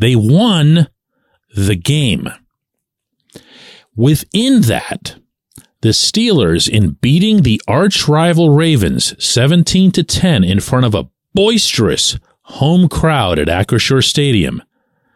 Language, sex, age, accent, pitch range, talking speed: English, male, 40-59, American, 105-170 Hz, 105 wpm